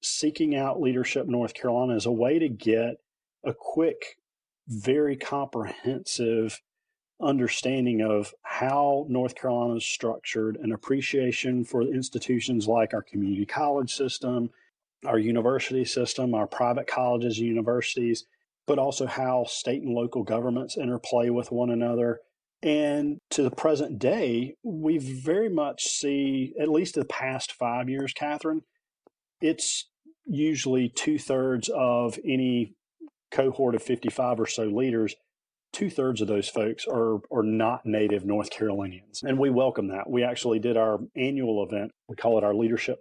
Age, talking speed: 40-59, 145 wpm